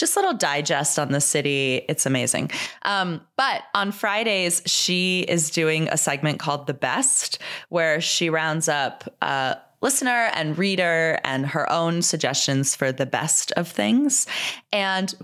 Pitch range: 155-200 Hz